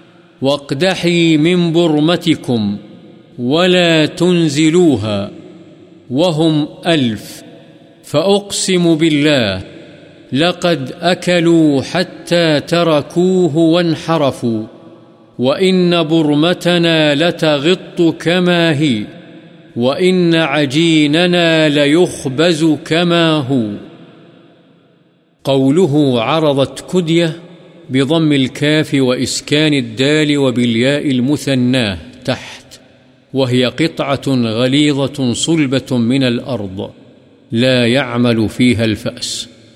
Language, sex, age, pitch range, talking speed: Urdu, male, 50-69, 120-165 Hz, 65 wpm